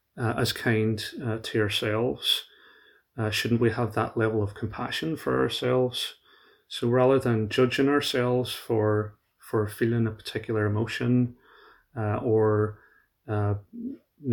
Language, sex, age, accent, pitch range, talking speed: English, male, 30-49, British, 110-125 Hz, 125 wpm